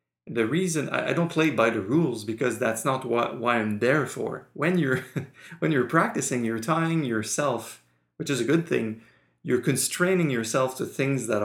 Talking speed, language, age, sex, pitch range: 185 wpm, English, 30-49, male, 110-140 Hz